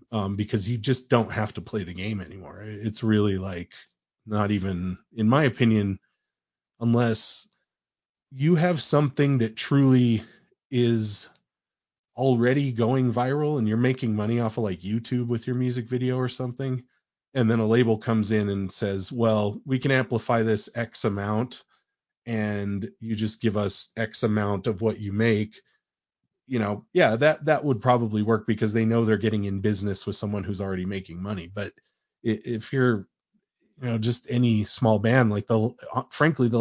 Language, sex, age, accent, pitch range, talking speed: English, male, 30-49, American, 105-125 Hz, 170 wpm